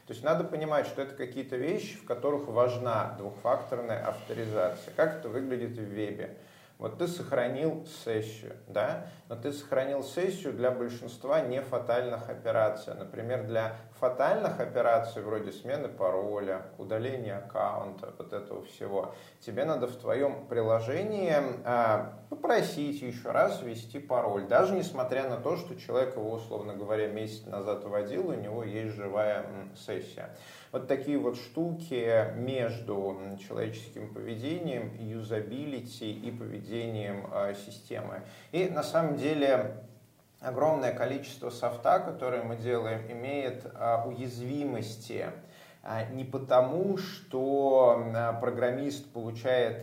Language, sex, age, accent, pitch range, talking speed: Russian, male, 30-49, native, 110-140 Hz, 120 wpm